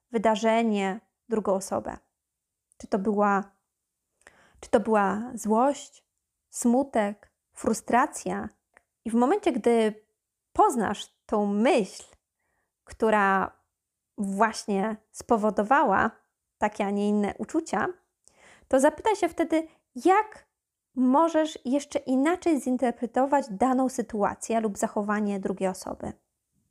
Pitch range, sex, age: 215-275 Hz, female, 20-39